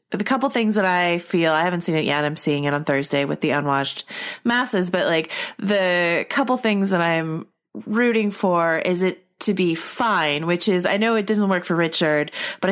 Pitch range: 155-210 Hz